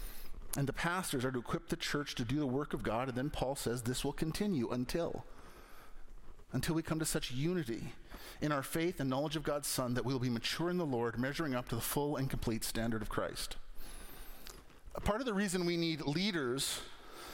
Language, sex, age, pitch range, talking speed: English, male, 40-59, 140-190 Hz, 210 wpm